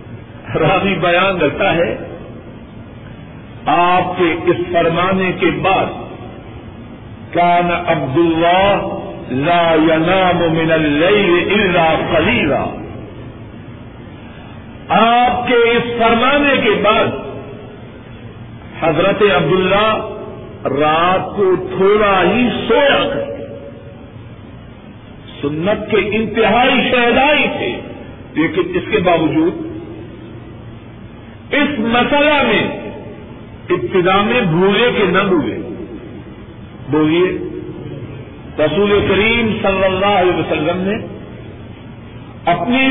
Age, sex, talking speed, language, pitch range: 50-69, male, 75 wpm, Urdu, 130-220 Hz